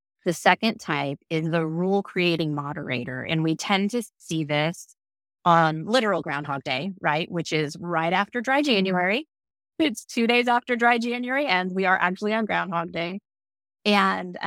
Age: 30-49